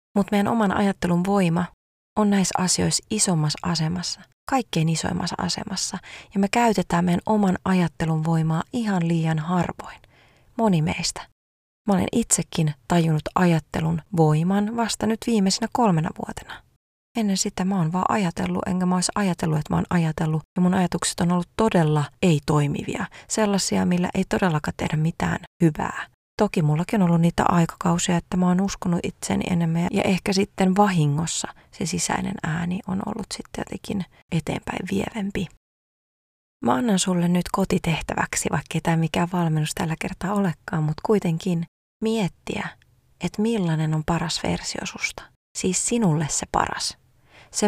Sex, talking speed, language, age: female, 145 wpm, Finnish, 30-49